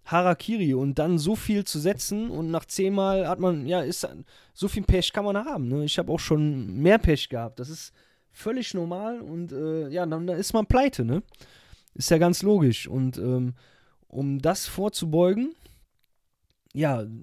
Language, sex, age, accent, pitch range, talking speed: German, male, 20-39, German, 130-180 Hz, 180 wpm